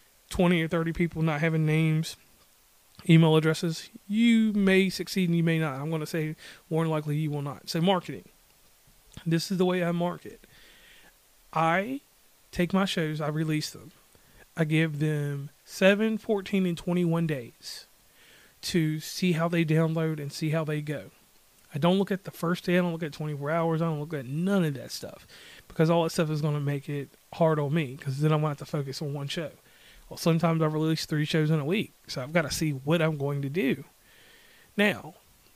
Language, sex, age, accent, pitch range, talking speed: English, male, 30-49, American, 155-180 Hz, 205 wpm